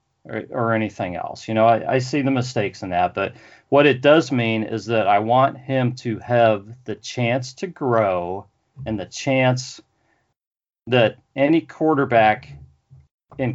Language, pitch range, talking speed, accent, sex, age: English, 115-140 Hz, 160 wpm, American, male, 40-59